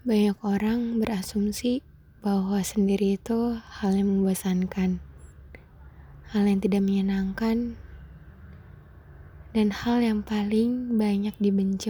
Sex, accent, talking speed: female, native, 95 wpm